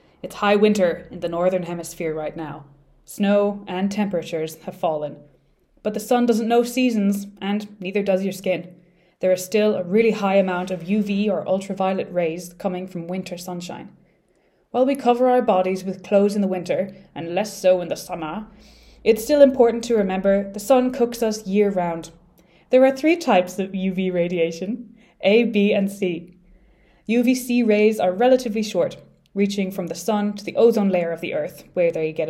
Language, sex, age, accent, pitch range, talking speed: English, female, 20-39, Irish, 180-205 Hz, 180 wpm